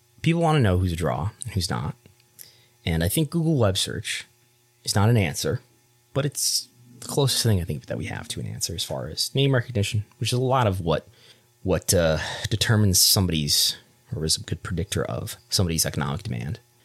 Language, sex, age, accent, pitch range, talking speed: English, male, 20-39, American, 90-120 Hz, 205 wpm